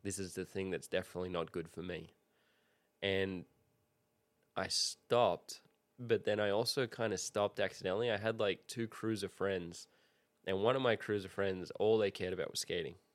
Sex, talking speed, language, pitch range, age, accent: male, 180 wpm, English, 95-110 Hz, 20-39, Australian